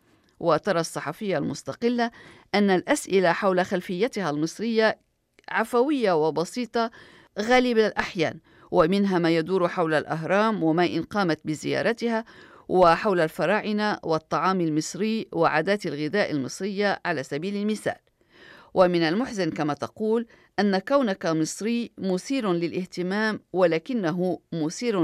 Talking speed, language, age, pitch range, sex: 100 wpm, Arabic, 50-69, 165-215 Hz, female